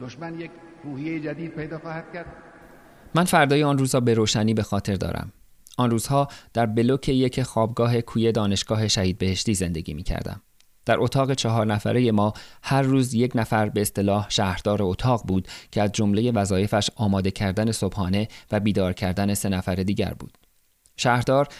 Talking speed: 145 wpm